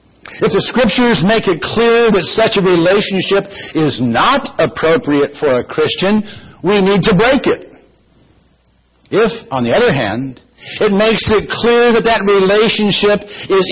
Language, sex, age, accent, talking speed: English, male, 60-79, American, 150 wpm